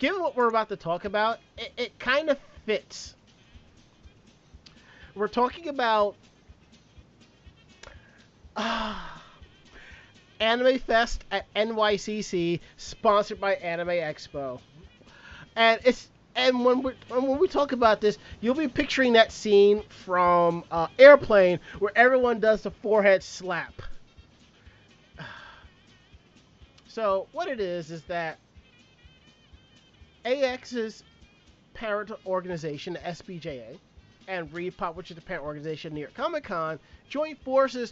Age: 30-49